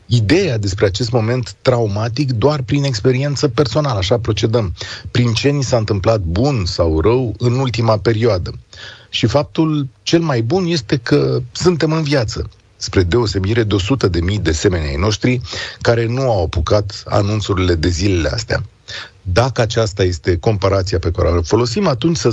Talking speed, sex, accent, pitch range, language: 160 wpm, male, native, 105-130 Hz, Romanian